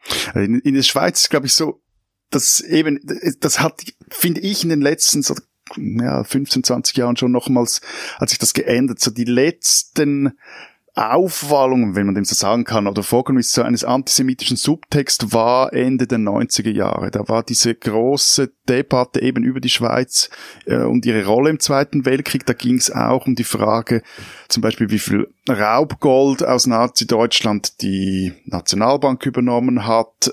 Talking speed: 160 wpm